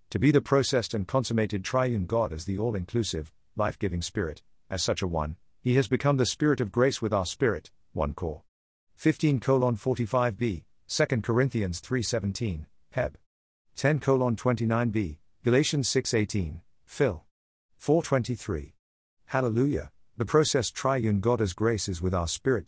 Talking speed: 145 wpm